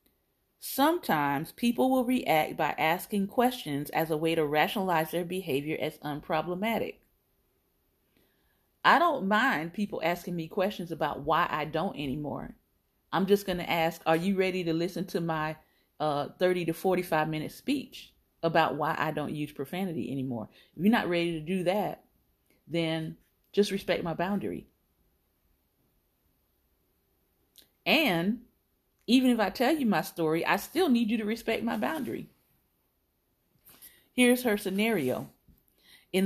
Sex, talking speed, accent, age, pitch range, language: female, 140 wpm, American, 40-59, 160-220 Hz, English